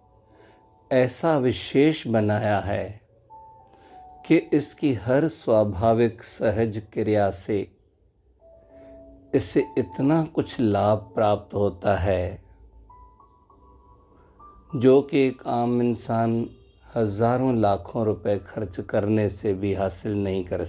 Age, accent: 50-69, native